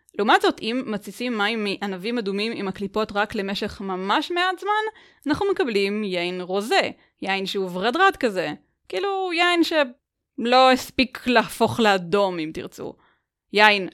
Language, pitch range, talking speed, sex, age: Hebrew, 195-295 Hz, 140 wpm, female, 20-39